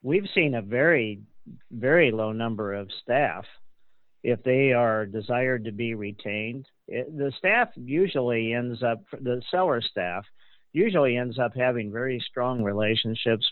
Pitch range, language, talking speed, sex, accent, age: 110-130 Hz, English, 140 wpm, male, American, 50-69